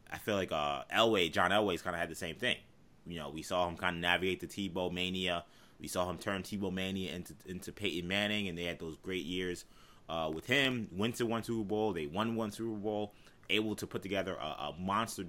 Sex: male